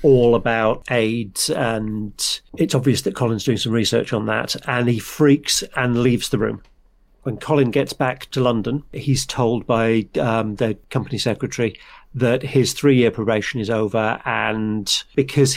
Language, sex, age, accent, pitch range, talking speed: English, male, 50-69, British, 110-130 Hz, 160 wpm